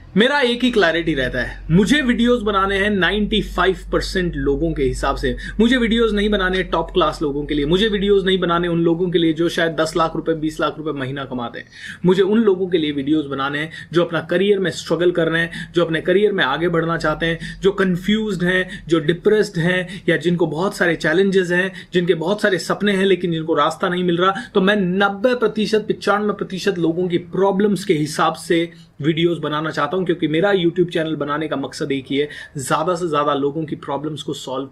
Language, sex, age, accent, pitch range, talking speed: Hindi, male, 30-49, native, 160-200 Hz, 215 wpm